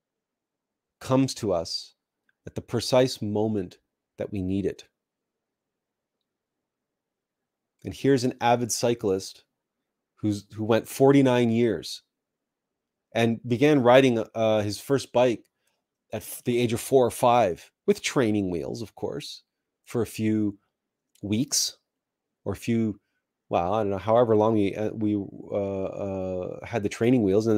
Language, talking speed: English, 135 wpm